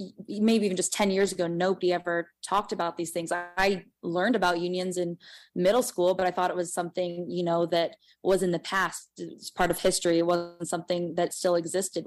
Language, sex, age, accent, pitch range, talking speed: English, female, 20-39, American, 175-195 Hz, 215 wpm